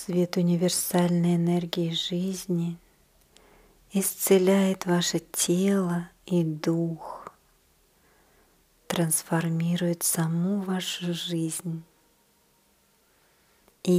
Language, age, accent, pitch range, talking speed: Russian, 40-59, native, 165-190 Hz, 60 wpm